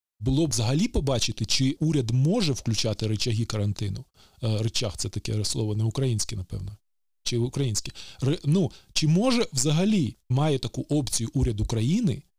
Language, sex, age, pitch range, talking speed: Ukrainian, male, 20-39, 110-145 Hz, 145 wpm